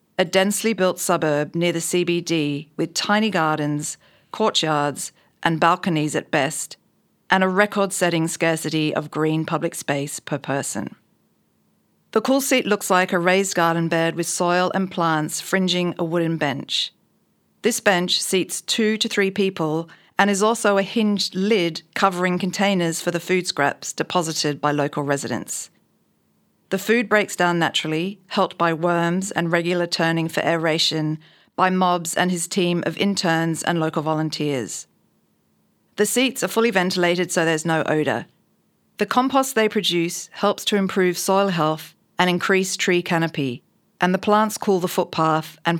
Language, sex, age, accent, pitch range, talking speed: English, female, 40-59, Australian, 160-195 Hz, 155 wpm